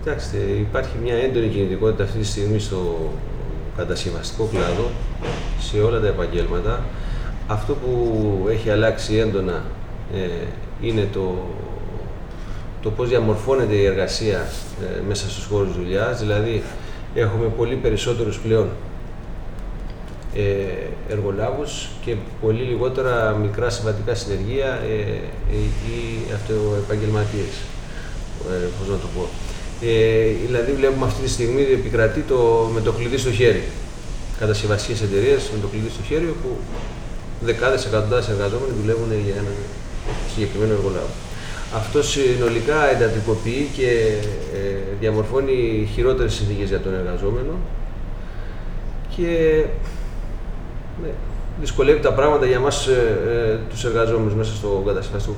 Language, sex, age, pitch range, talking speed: Greek, male, 30-49, 100-120 Hz, 120 wpm